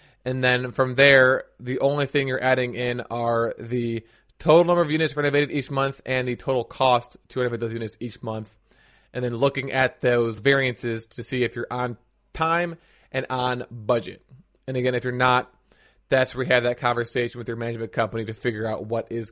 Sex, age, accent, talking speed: male, 20-39, American, 200 wpm